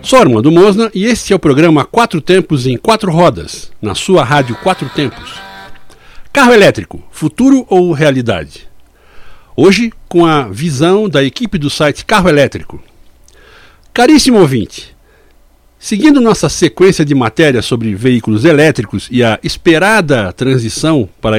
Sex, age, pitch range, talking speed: male, 60-79, 120-180 Hz, 135 wpm